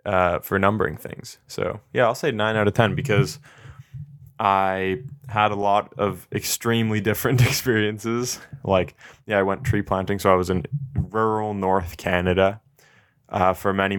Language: English